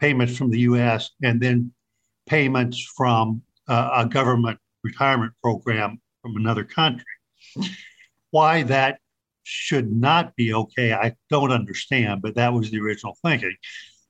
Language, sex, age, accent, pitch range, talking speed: English, male, 50-69, American, 115-135 Hz, 130 wpm